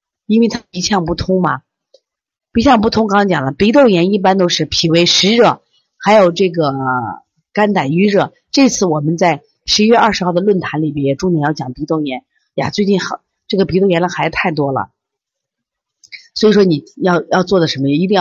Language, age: Chinese, 30-49